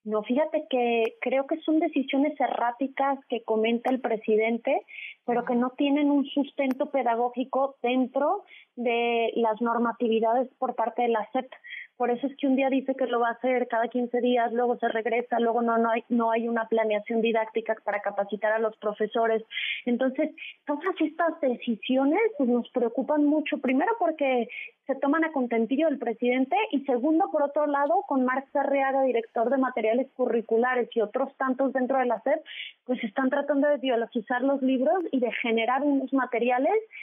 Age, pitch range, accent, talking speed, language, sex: 30-49, 235-280 Hz, Mexican, 170 wpm, Spanish, female